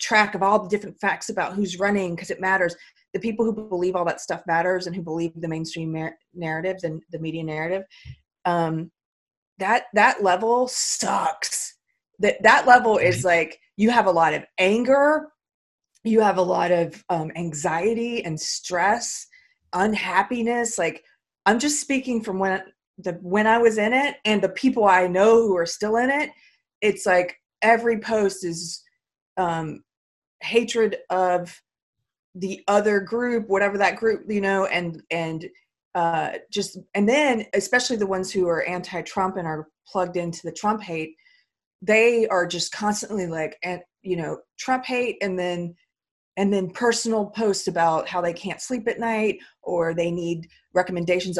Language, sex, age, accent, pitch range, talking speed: English, female, 30-49, American, 170-220 Hz, 165 wpm